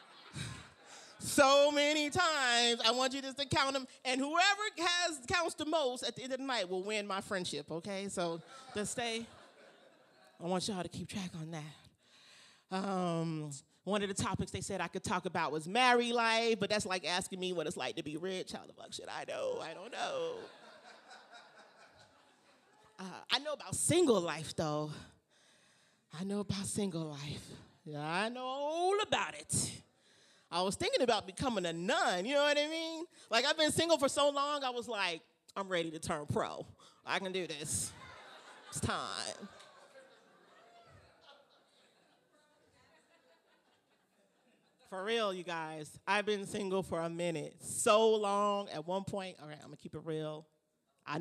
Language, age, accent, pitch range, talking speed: English, 30-49, American, 165-260 Hz, 170 wpm